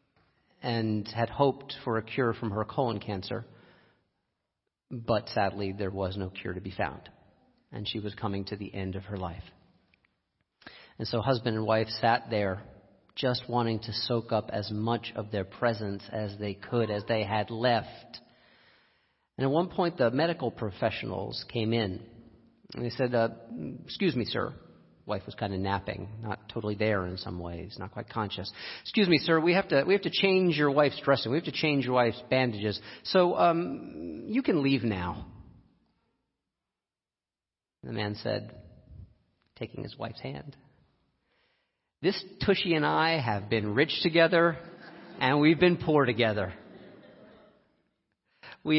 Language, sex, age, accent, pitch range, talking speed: English, male, 40-59, American, 105-155 Hz, 160 wpm